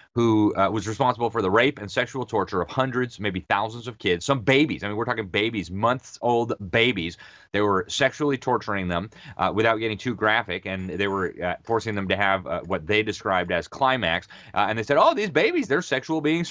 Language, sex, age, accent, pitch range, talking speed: English, male, 30-49, American, 100-135 Hz, 220 wpm